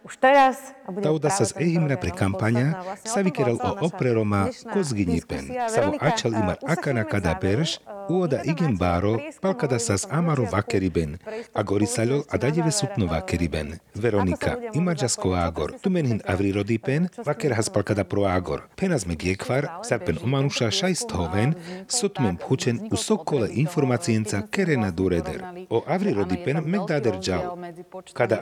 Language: Slovak